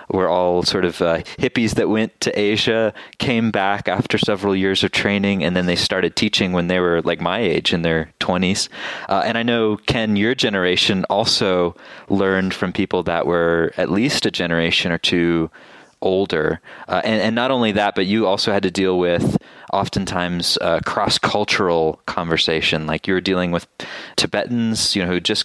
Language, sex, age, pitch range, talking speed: English, male, 20-39, 90-105 Hz, 180 wpm